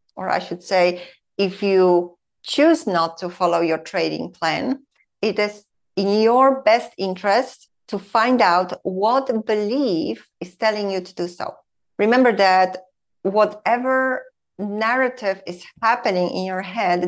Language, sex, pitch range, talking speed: English, female, 185-245 Hz, 135 wpm